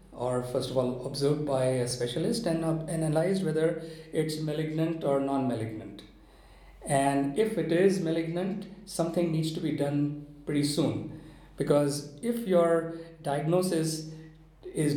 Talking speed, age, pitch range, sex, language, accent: 130 wpm, 50-69, 145-180 Hz, male, English, Indian